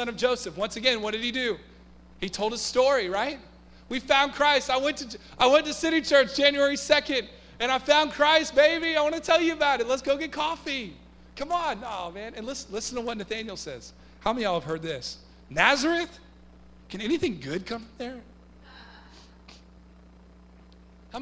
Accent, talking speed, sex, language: American, 190 wpm, male, English